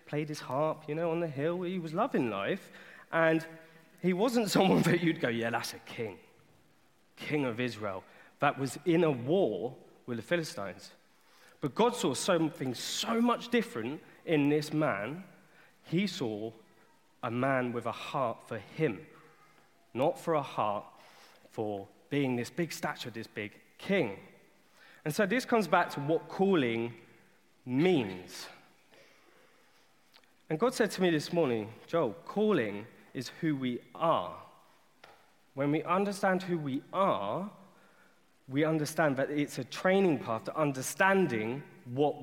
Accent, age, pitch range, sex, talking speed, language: British, 30-49, 130-185 Hz, male, 145 wpm, English